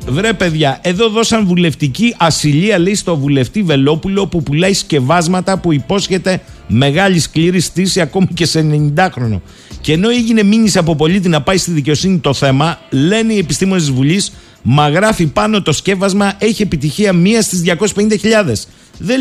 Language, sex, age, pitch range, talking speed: Greek, male, 50-69, 150-200 Hz, 160 wpm